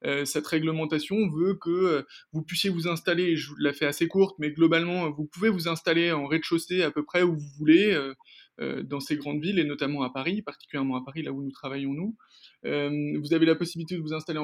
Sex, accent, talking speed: male, French, 235 wpm